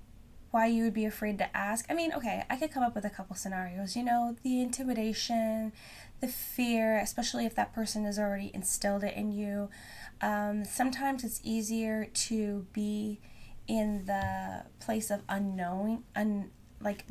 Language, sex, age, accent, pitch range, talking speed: English, female, 10-29, American, 200-245 Hz, 160 wpm